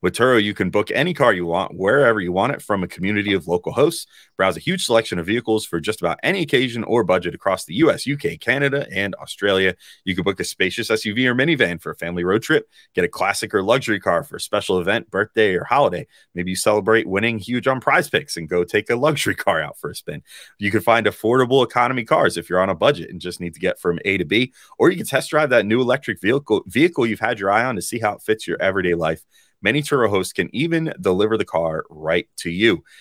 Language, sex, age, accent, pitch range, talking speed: English, male, 30-49, American, 85-125 Hz, 250 wpm